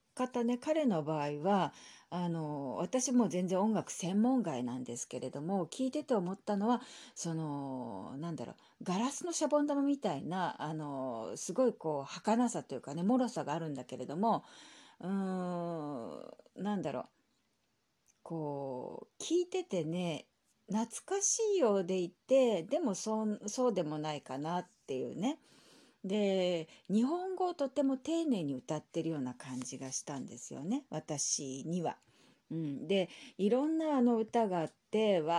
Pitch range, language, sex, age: 160-240 Hz, Japanese, female, 40-59